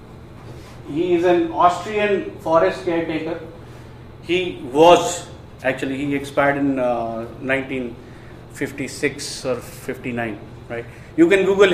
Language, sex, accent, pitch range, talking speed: Hindi, male, native, 120-170 Hz, 100 wpm